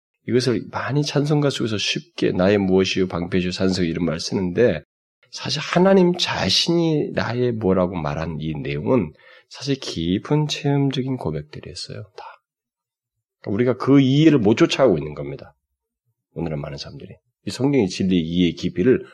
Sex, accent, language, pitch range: male, native, Korean, 85-125 Hz